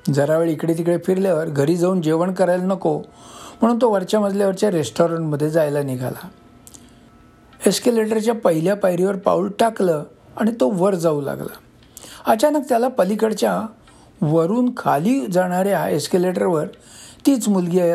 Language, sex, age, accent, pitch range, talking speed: Marathi, male, 60-79, native, 165-220 Hz, 120 wpm